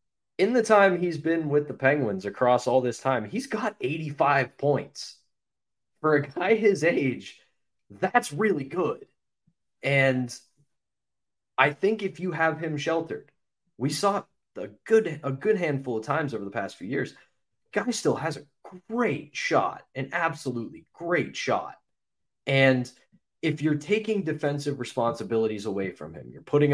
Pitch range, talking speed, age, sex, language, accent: 115-160 Hz, 150 wpm, 20-39, male, English, American